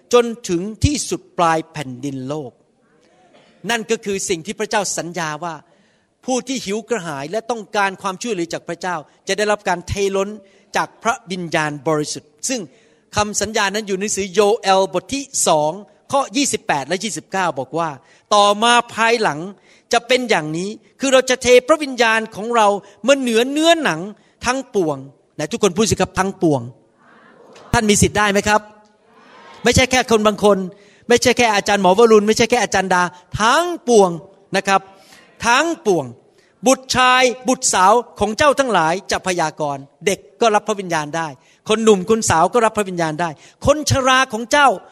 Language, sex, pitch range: Thai, male, 175-235 Hz